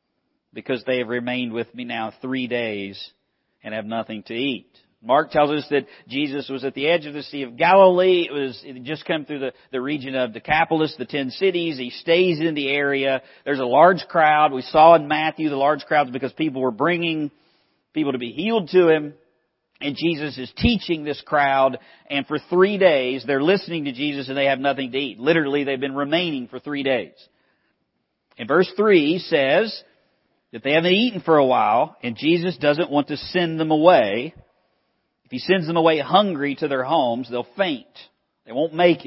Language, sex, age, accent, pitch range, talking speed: English, male, 50-69, American, 130-170 Hz, 195 wpm